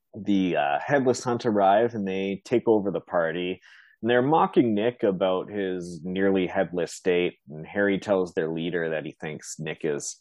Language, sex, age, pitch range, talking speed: English, male, 20-39, 90-110 Hz, 175 wpm